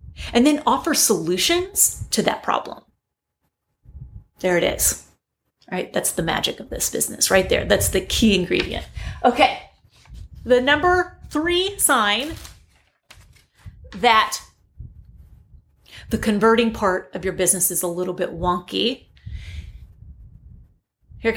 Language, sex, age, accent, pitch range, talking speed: English, female, 30-49, American, 195-295 Hz, 120 wpm